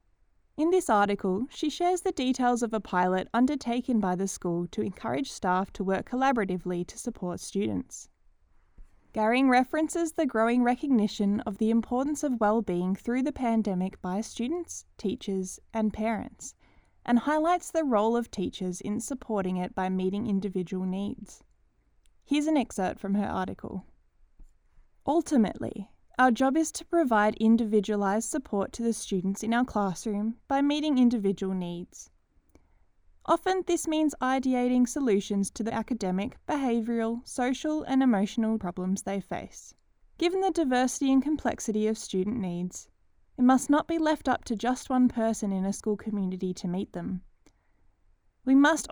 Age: 10-29